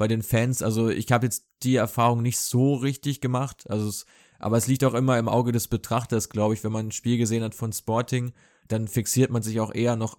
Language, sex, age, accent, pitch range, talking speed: German, male, 20-39, German, 110-125 Hz, 240 wpm